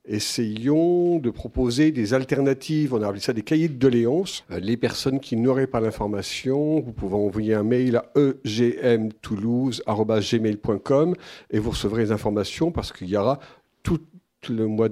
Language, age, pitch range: French, 50-69, 115-155 Hz